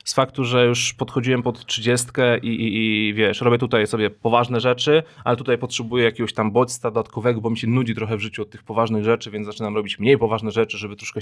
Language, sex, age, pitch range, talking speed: Polish, male, 20-39, 110-130 Hz, 225 wpm